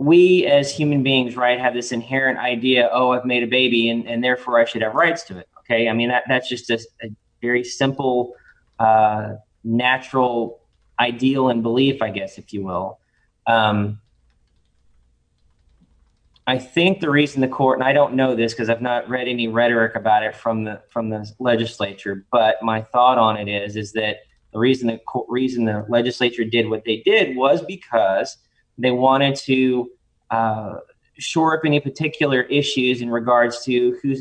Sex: male